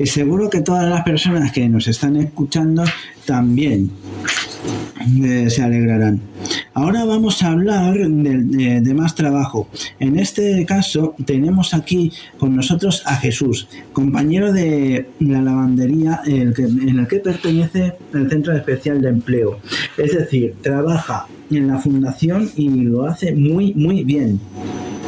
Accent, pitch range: Spanish, 130-175 Hz